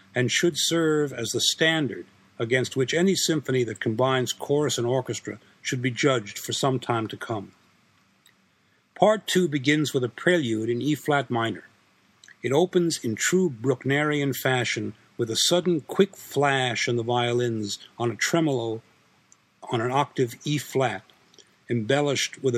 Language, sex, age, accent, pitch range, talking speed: English, male, 50-69, American, 120-150 Hz, 145 wpm